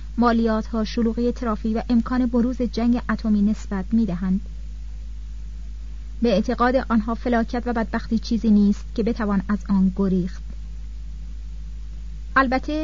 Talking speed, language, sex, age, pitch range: 110 wpm, Persian, female, 30-49, 195-240 Hz